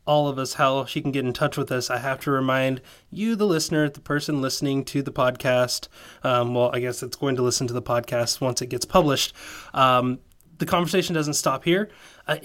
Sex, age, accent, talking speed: male, 20-39, American, 220 wpm